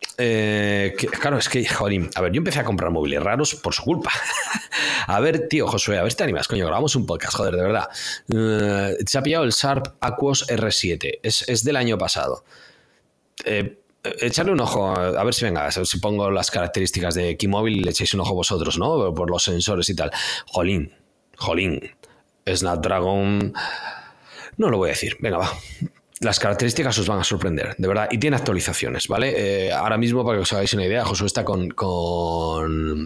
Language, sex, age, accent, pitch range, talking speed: Spanish, male, 30-49, Spanish, 95-125 Hz, 195 wpm